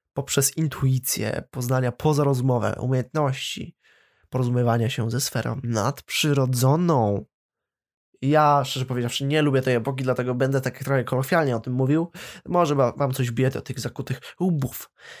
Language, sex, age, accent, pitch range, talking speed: Polish, male, 20-39, native, 125-145 Hz, 135 wpm